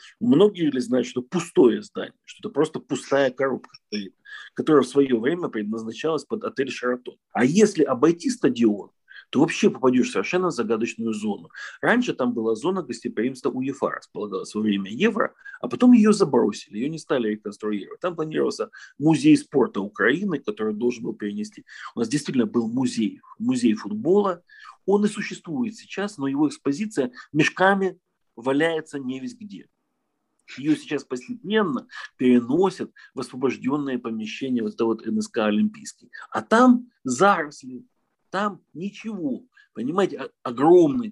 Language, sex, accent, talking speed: Russian, male, native, 140 wpm